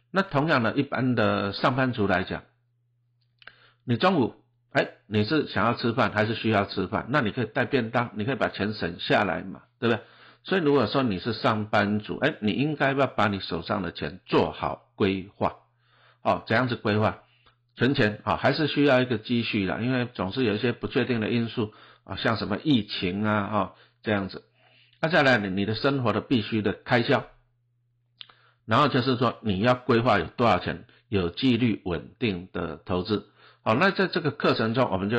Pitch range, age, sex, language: 105-125 Hz, 60-79, male, Chinese